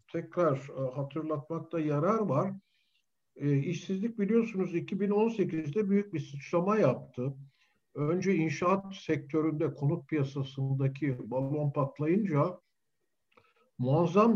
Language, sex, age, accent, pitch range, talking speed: Turkish, male, 60-79, native, 145-200 Hz, 85 wpm